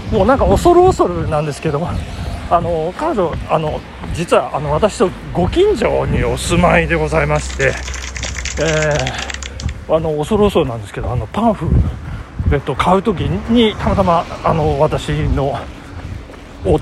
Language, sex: Japanese, male